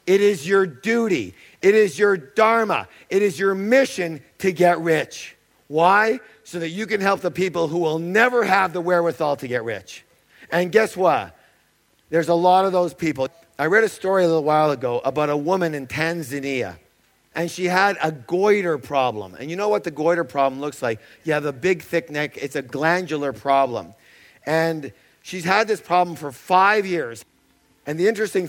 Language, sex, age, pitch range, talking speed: English, male, 50-69, 155-205 Hz, 190 wpm